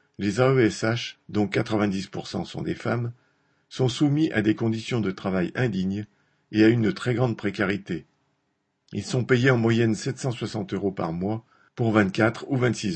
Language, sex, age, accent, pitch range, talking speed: French, male, 50-69, French, 100-125 Hz, 155 wpm